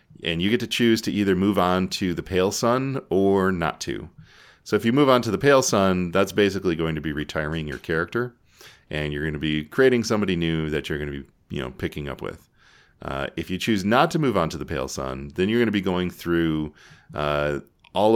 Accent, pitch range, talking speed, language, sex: American, 80-100 Hz, 240 wpm, English, male